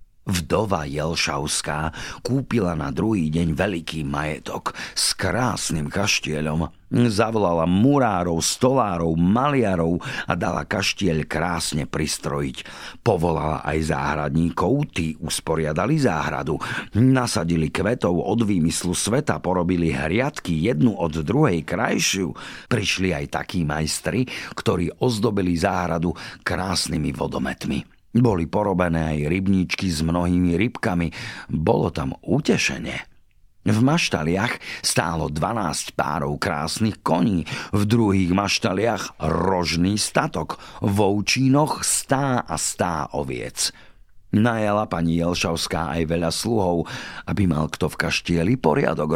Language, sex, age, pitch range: Slovak, male, 50-69, 80-105 Hz